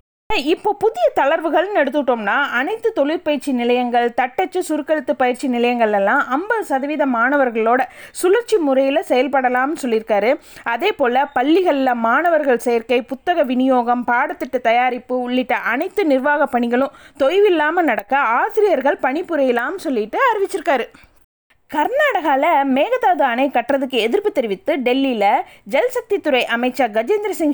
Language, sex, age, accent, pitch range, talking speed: Tamil, female, 20-39, native, 245-340 Hz, 105 wpm